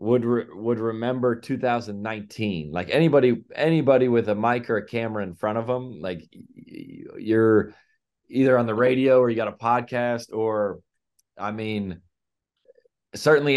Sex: male